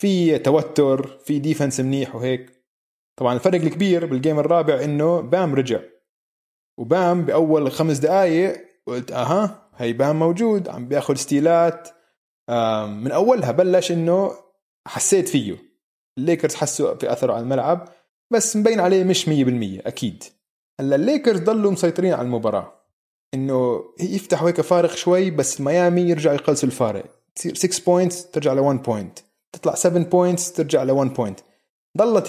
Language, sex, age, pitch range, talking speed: Arabic, male, 20-39, 125-170 Hz, 140 wpm